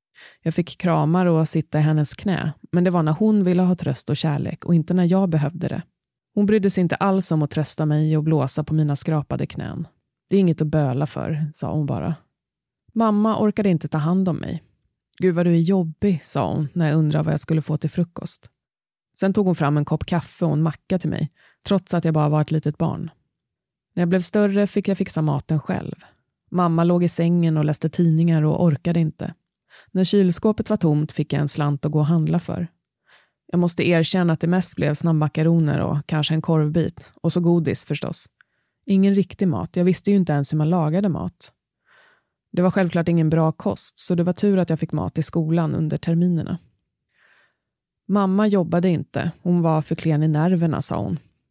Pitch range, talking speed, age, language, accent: 155-185 Hz, 210 wpm, 20-39, Swedish, native